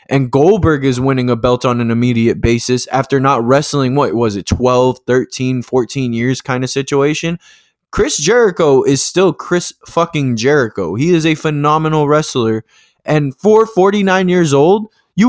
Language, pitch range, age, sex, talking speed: English, 140-185 Hz, 20-39, male, 160 wpm